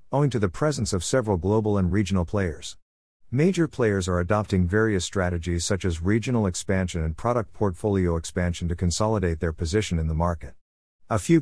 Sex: male